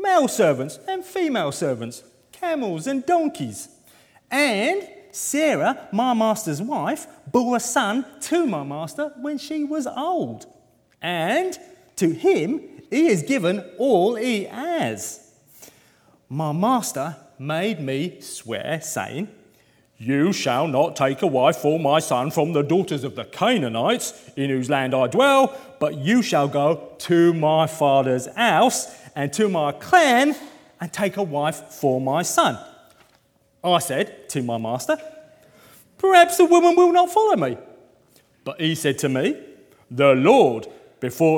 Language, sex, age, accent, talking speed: English, male, 30-49, British, 140 wpm